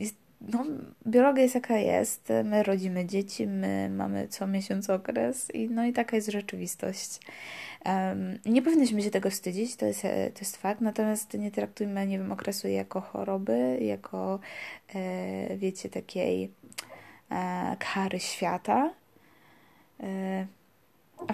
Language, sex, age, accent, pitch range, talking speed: Polish, female, 20-39, native, 190-220 Hz, 120 wpm